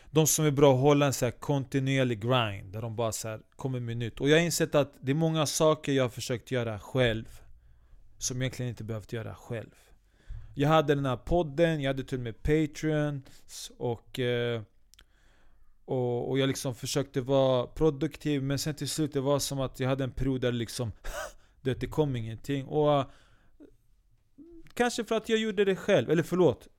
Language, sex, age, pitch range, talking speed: Swedish, male, 30-49, 110-140 Hz, 190 wpm